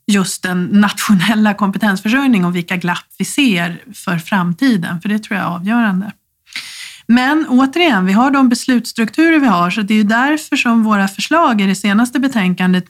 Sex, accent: female, native